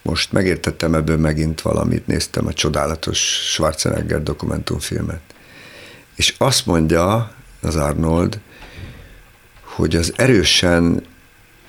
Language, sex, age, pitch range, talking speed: Hungarian, male, 60-79, 80-95 Hz, 90 wpm